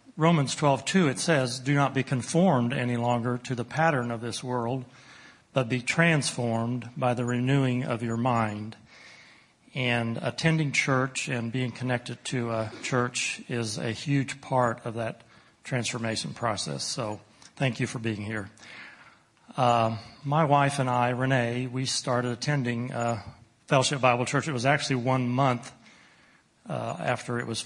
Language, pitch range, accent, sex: English, 115-130 Hz, American, male